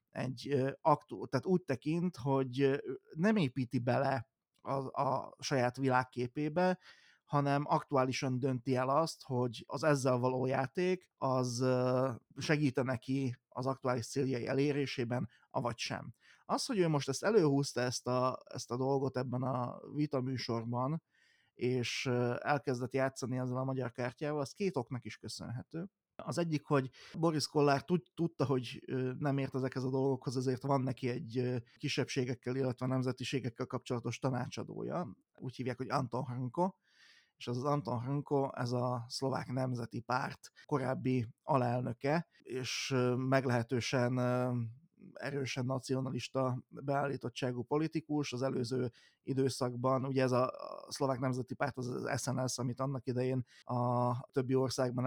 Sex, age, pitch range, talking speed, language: male, 30-49, 125-140 Hz, 130 wpm, Hungarian